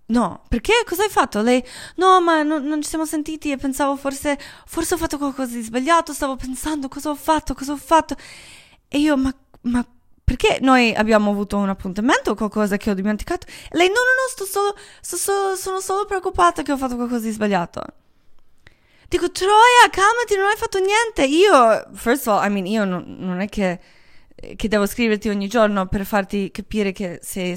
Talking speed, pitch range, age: 195 wpm, 205-300 Hz, 20-39